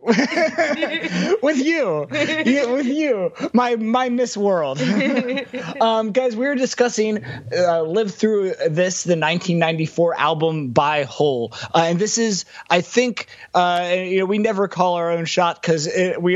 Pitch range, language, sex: 150-185 Hz, English, male